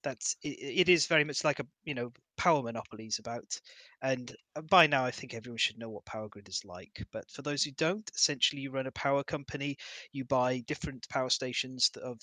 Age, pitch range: 30-49, 125-155 Hz